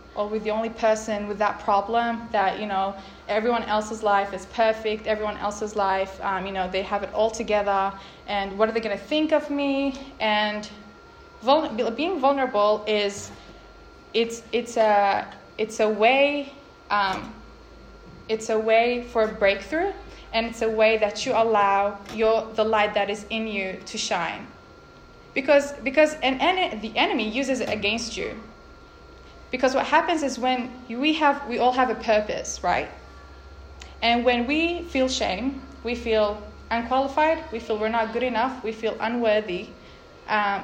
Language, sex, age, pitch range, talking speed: English, female, 20-39, 205-240 Hz, 160 wpm